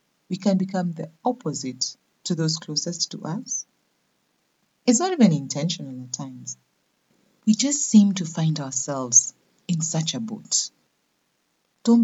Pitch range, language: 135-215 Hz, English